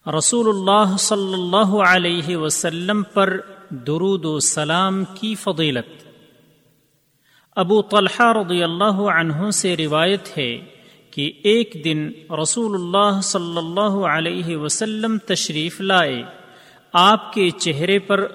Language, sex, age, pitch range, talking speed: Urdu, male, 40-59, 155-195 Hz, 115 wpm